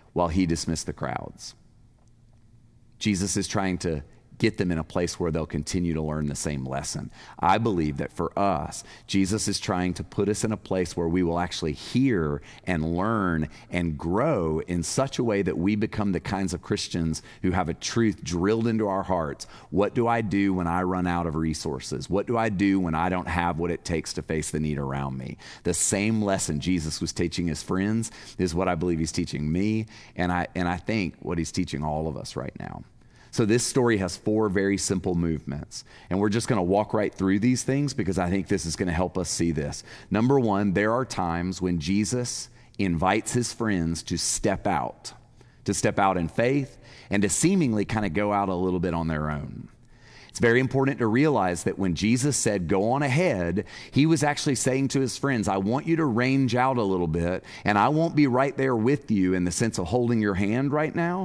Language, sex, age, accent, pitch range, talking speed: English, male, 40-59, American, 85-115 Hz, 215 wpm